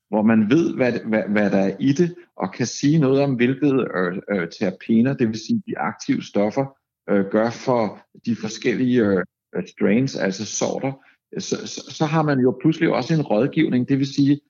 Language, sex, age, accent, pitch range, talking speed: Danish, male, 60-79, native, 115-150 Hz, 180 wpm